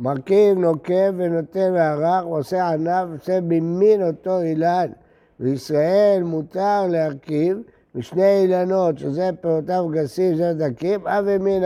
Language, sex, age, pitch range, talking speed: Hebrew, male, 60-79, 150-190 Hz, 115 wpm